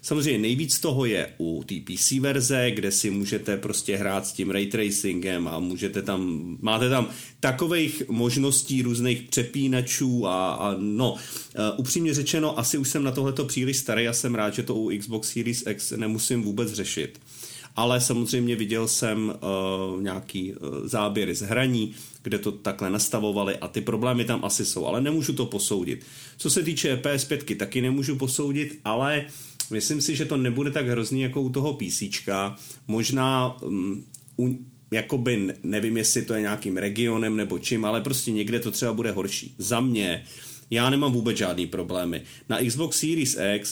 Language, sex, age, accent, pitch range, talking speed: Czech, male, 40-59, native, 105-130 Hz, 170 wpm